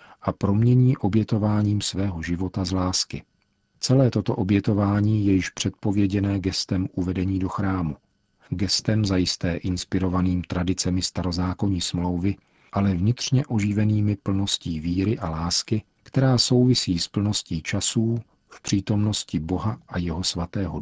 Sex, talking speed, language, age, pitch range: male, 120 wpm, Czech, 40-59, 90-105 Hz